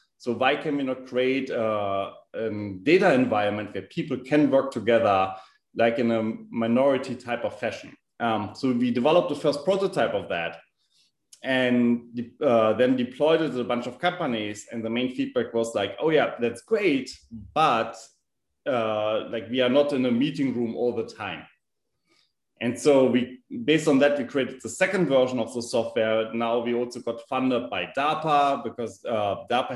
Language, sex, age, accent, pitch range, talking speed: English, male, 30-49, German, 115-140 Hz, 175 wpm